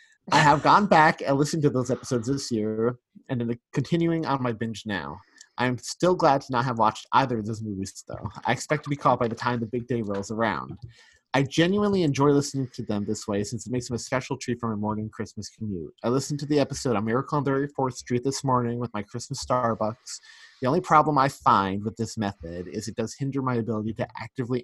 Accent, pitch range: American, 110-140 Hz